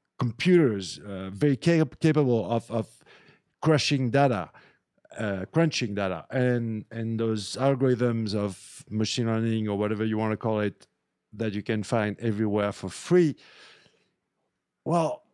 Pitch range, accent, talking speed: 110-140 Hz, French, 135 wpm